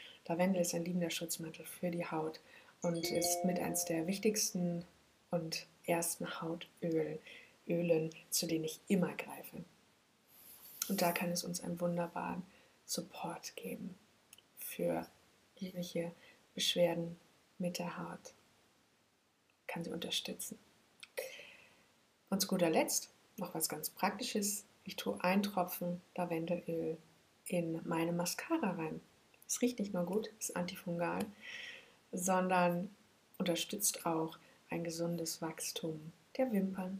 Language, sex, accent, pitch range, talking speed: German, female, German, 170-195 Hz, 120 wpm